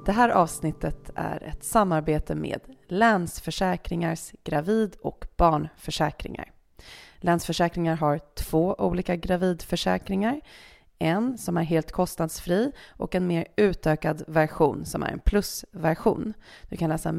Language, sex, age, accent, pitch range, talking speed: Swedish, female, 30-49, native, 160-195 Hz, 115 wpm